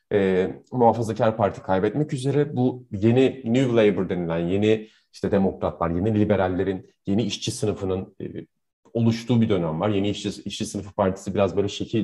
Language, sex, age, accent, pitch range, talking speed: Turkish, male, 30-49, native, 105-150 Hz, 155 wpm